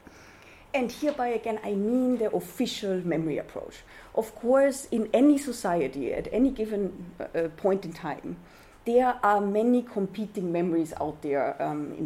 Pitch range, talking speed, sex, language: 170-245 Hz, 150 wpm, female, English